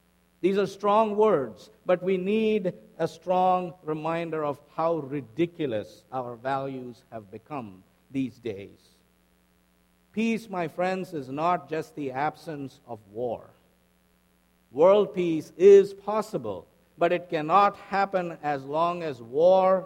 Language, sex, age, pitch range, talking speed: English, male, 50-69, 115-175 Hz, 125 wpm